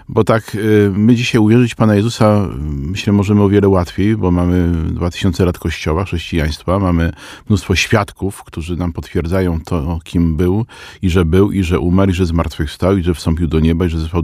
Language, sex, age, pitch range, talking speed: Polish, male, 40-59, 80-105 Hz, 190 wpm